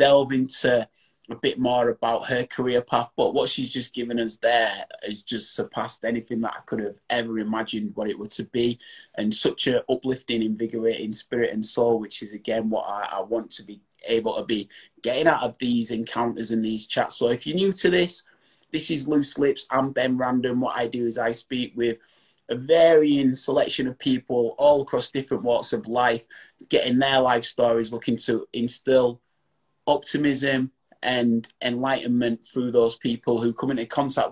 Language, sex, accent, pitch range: English, male, British, 115-140 Hz